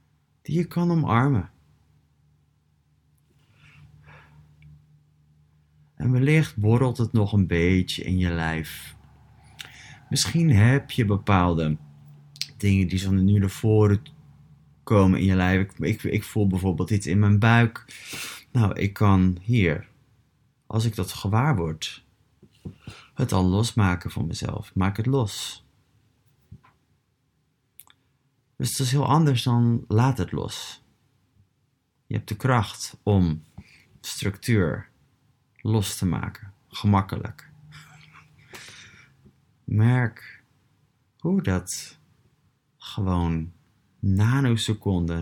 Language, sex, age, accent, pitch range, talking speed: Dutch, male, 30-49, Dutch, 95-130 Hz, 105 wpm